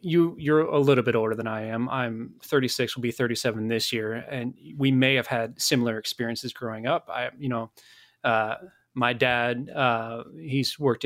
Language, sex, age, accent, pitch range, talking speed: English, male, 20-39, American, 115-135 Hz, 185 wpm